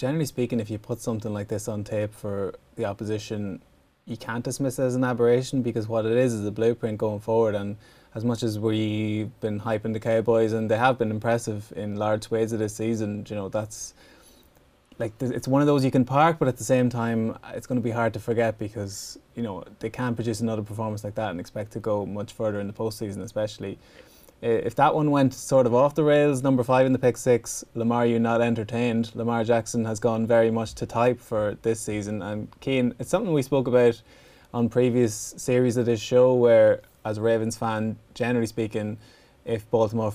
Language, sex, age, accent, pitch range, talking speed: English, male, 20-39, Irish, 110-125 Hz, 215 wpm